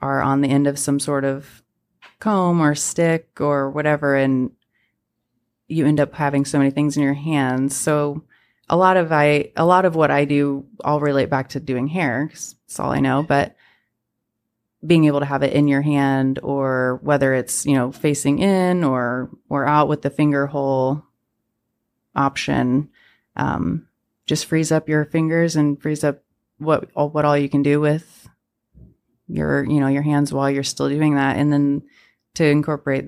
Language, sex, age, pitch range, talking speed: English, female, 30-49, 135-150 Hz, 180 wpm